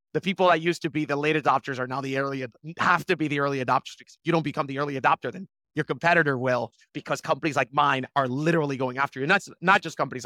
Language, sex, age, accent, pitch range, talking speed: English, male, 30-49, American, 130-155 Hz, 265 wpm